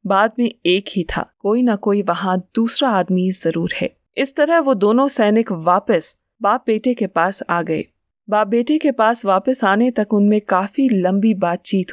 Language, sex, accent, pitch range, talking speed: Hindi, female, native, 195-255 Hz, 180 wpm